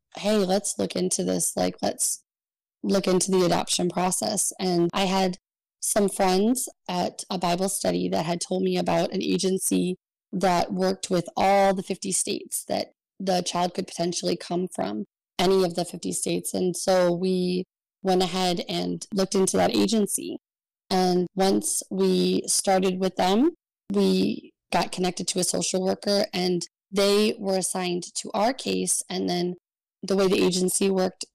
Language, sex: English, female